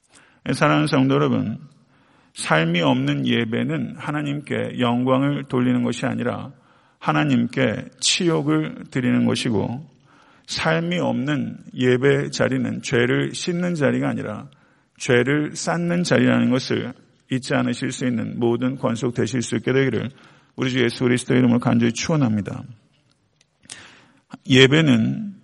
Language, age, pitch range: Korean, 40-59, 120-140 Hz